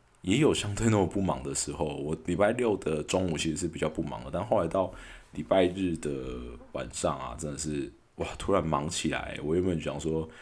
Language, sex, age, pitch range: Chinese, male, 20-39, 70-85 Hz